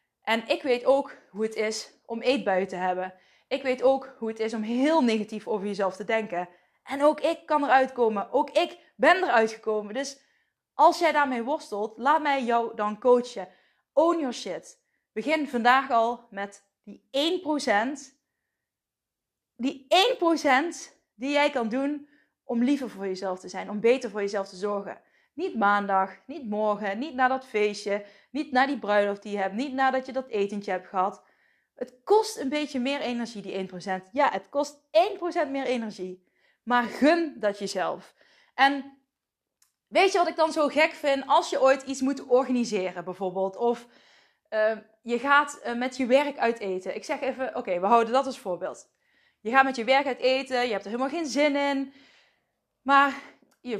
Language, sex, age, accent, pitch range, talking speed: Dutch, female, 20-39, Dutch, 210-280 Hz, 180 wpm